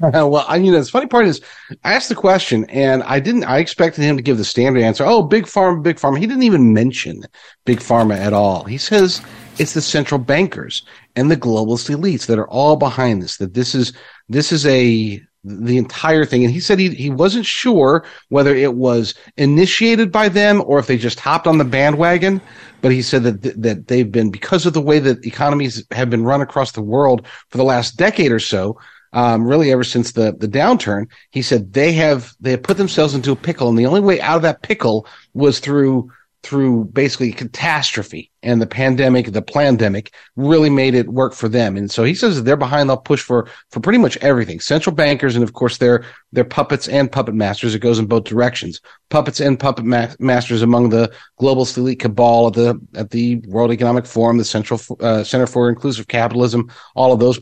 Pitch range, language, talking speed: 115-145 Hz, English, 215 wpm